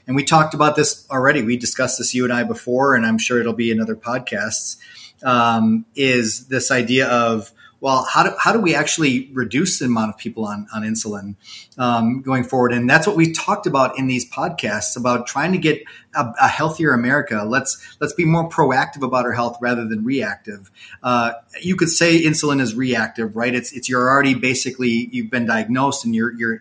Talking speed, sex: 205 wpm, male